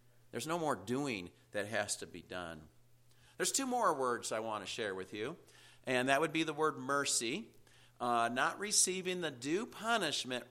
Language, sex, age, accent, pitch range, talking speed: English, male, 50-69, American, 115-155 Hz, 185 wpm